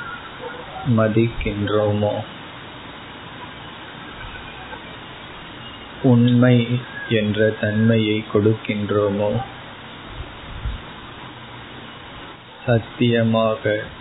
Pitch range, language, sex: 105-115 Hz, Tamil, male